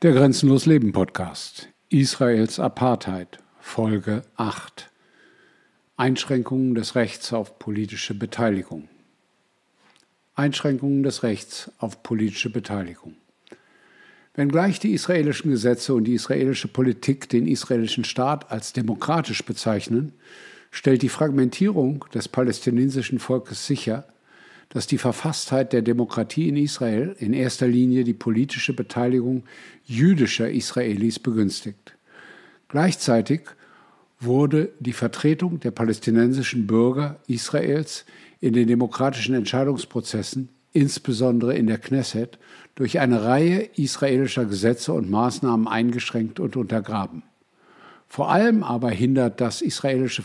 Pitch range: 115-140 Hz